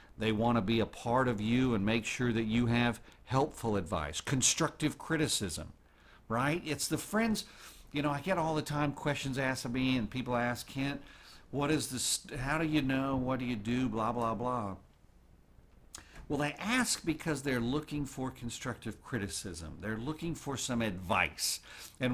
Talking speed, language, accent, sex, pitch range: 180 wpm, English, American, male, 95-125 Hz